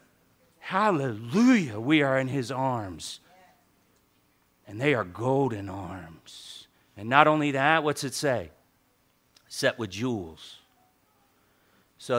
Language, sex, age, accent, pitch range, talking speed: English, male, 40-59, American, 95-130 Hz, 110 wpm